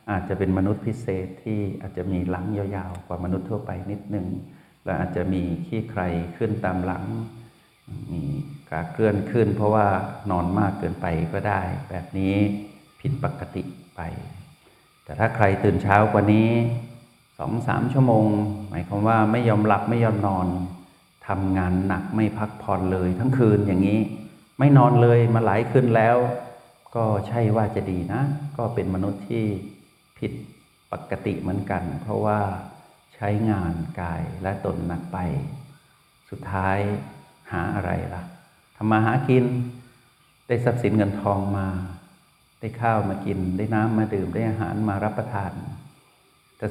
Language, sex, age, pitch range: Thai, male, 60-79, 95-115 Hz